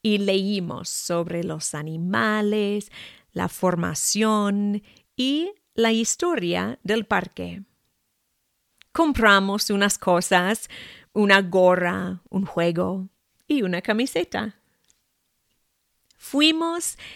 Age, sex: 30-49, female